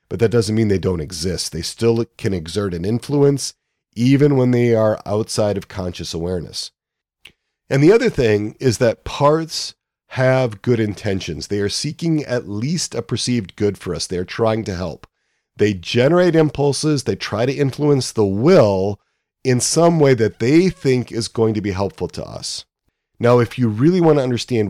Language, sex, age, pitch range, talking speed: English, male, 40-59, 105-130 Hz, 180 wpm